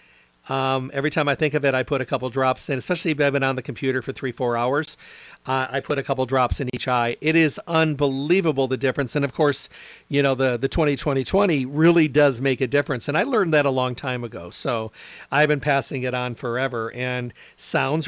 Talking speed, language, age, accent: 225 wpm, English, 50-69, American